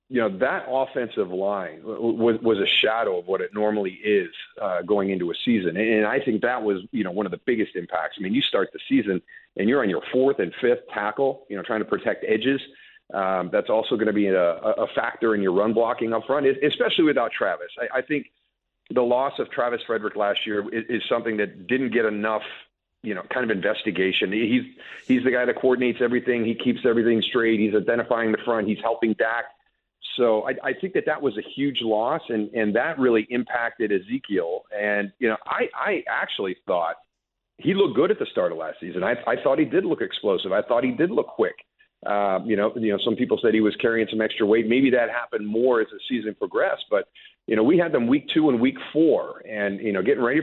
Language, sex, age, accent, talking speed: English, male, 40-59, American, 230 wpm